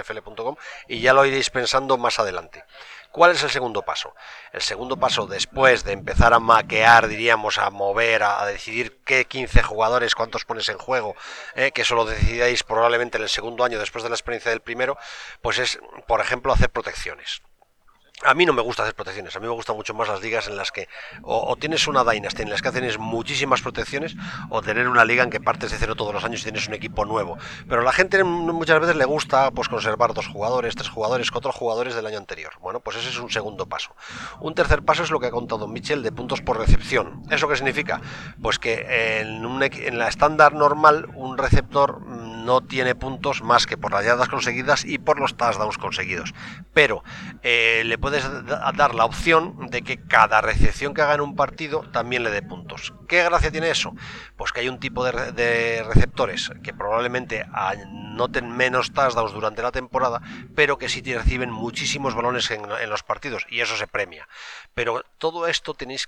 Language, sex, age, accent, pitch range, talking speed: Spanish, male, 40-59, Spanish, 115-140 Hz, 200 wpm